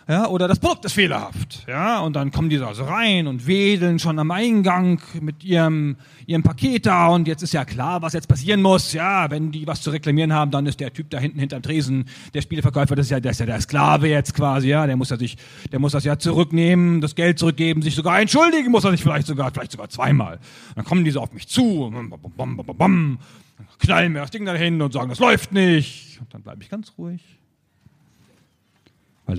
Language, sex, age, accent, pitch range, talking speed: German, male, 40-59, German, 130-170 Hz, 225 wpm